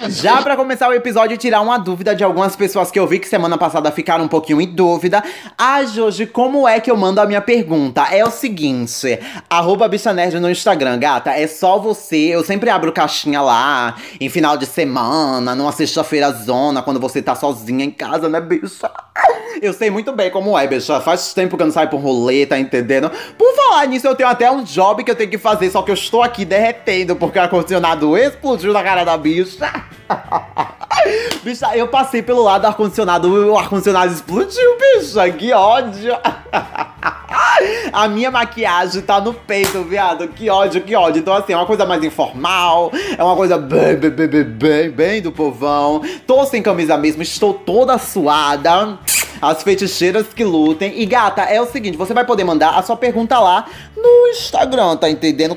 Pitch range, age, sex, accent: 165-240 Hz, 20-39, male, Brazilian